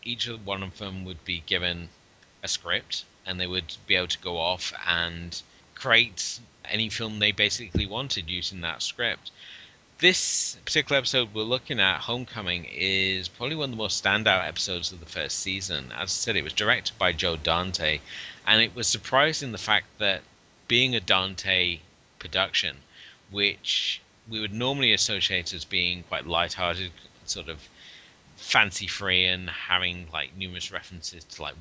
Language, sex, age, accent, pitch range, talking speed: English, male, 30-49, British, 85-105 Hz, 165 wpm